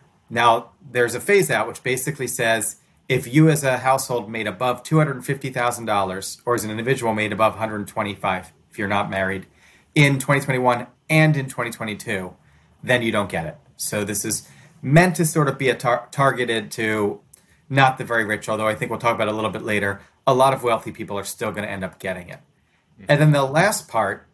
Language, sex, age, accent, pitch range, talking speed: English, male, 30-49, American, 105-135 Hz, 210 wpm